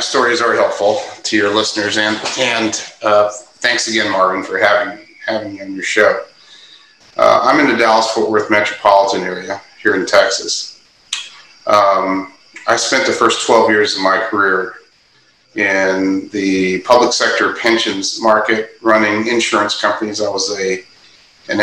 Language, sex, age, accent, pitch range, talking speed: English, male, 40-59, American, 105-115 Hz, 150 wpm